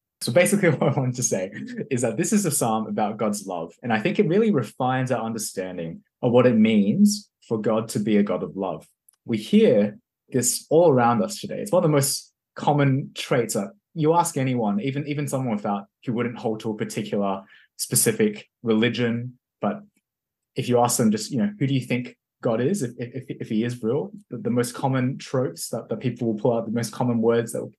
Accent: Australian